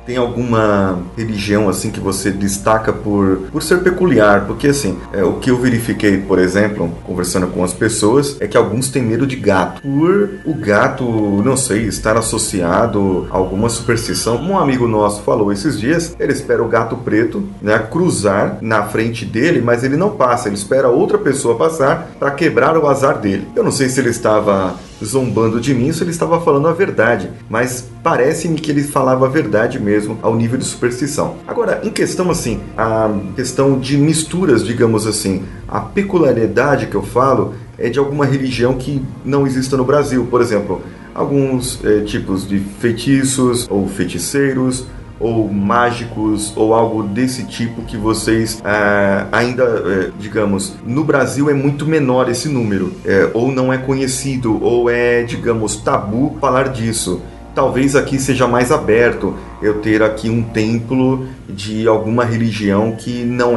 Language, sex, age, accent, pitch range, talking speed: Portuguese, male, 30-49, Brazilian, 105-130 Hz, 160 wpm